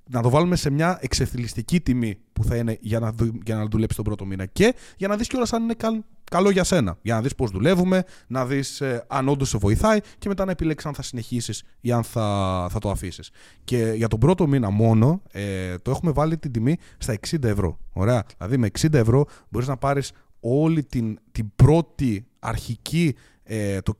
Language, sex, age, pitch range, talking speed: Greek, male, 30-49, 110-145 Hz, 210 wpm